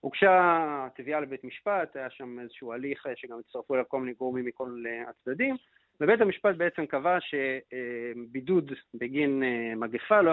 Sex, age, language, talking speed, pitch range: male, 40-59, Hebrew, 140 wpm, 130-180 Hz